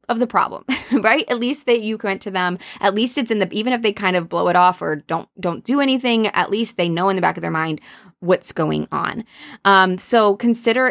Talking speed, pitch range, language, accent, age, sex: 250 wpm, 170-225 Hz, English, American, 20-39, female